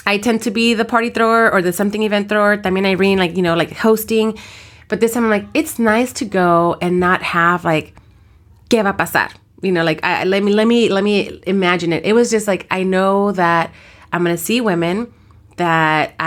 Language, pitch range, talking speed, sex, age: English, 165-200 Hz, 230 wpm, female, 30-49